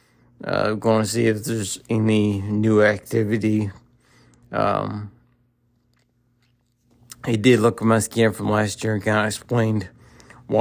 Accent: American